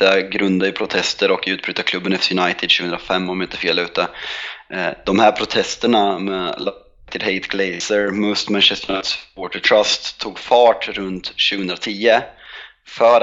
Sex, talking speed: male, 145 wpm